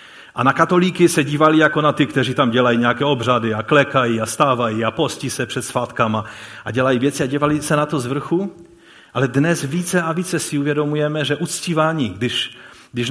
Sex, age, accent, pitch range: male, 40-59, native, 120-170 Hz